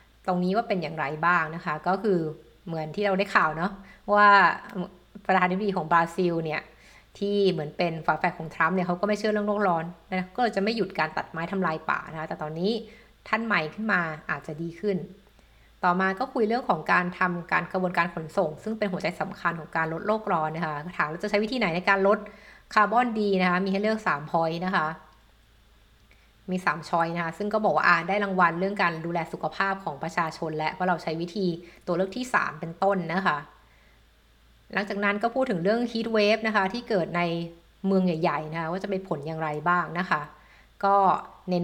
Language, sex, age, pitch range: Thai, female, 60-79, 165-205 Hz